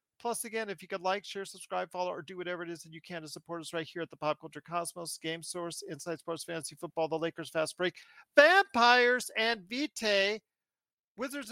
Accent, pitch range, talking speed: American, 170-240 Hz, 215 wpm